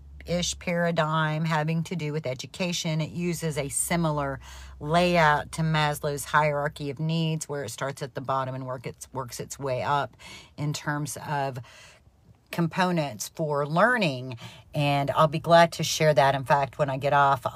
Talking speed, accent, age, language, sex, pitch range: 165 wpm, American, 40-59, English, female, 145-175 Hz